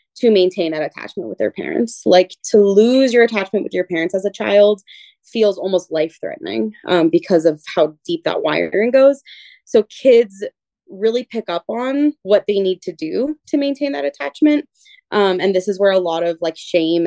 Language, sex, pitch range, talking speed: English, female, 170-205 Hz, 185 wpm